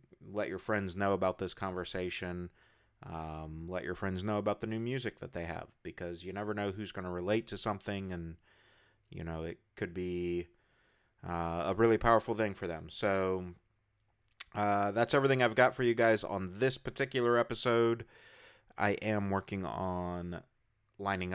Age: 30-49